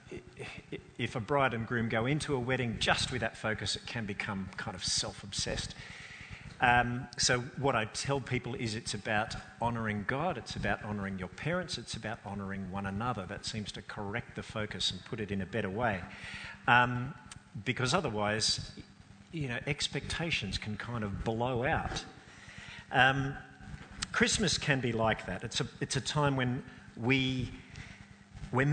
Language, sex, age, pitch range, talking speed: English, male, 50-69, 110-155 Hz, 160 wpm